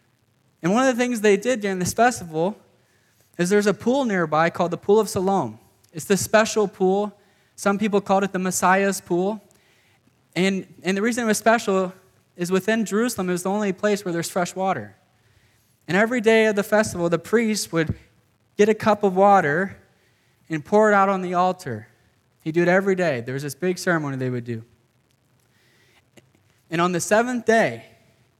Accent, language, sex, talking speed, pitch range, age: American, English, male, 190 wpm, 130-195 Hz, 20-39